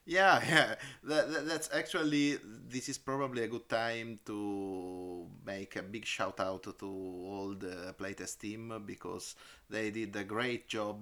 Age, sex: 30-49, male